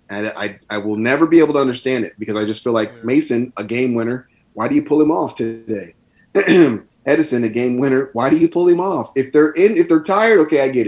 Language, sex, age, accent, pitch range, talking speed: English, male, 30-49, American, 110-150 Hz, 250 wpm